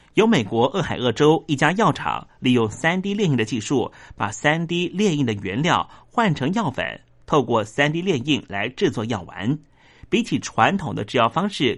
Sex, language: male, Chinese